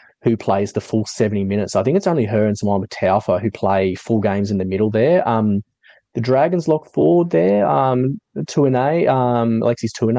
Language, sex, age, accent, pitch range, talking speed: English, male, 20-39, Australian, 100-125 Hz, 200 wpm